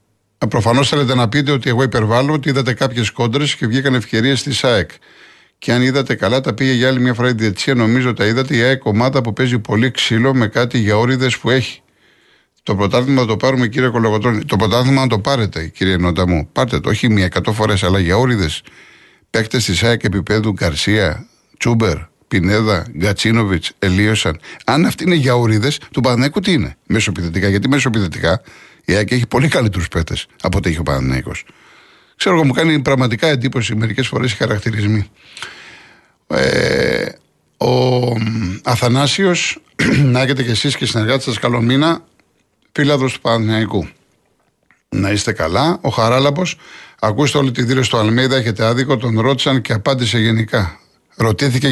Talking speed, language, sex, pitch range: 160 wpm, Greek, male, 105-130 Hz